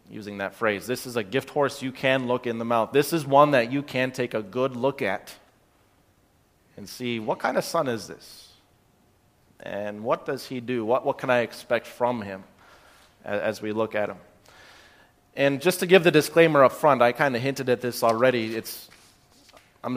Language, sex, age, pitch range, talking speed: English, male, 30-49, 115-140 Hz, 200 wpm